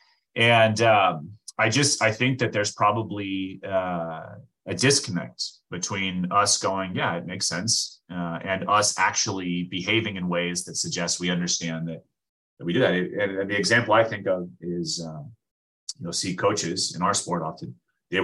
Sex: male